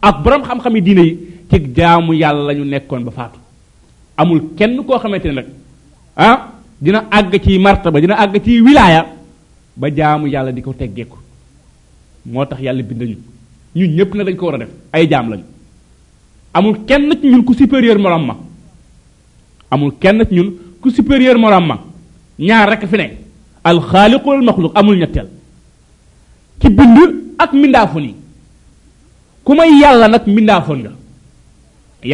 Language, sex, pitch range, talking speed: French, male, 150-225 Hz, 90 wpm